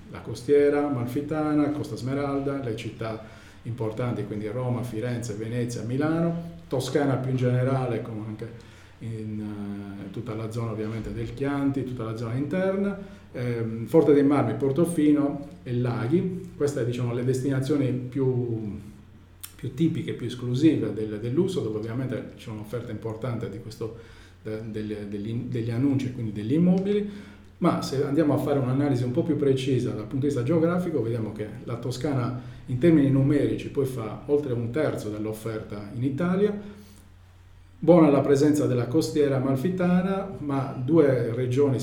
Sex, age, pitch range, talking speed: male, 40-59, 110-145 Hz, 155 wpm